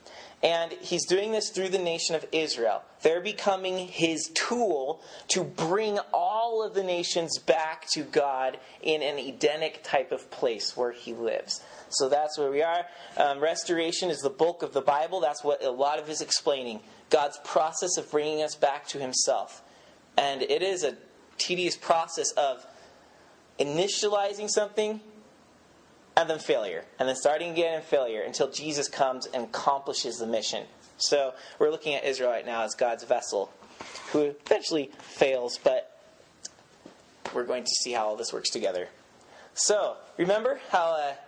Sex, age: male, 30-49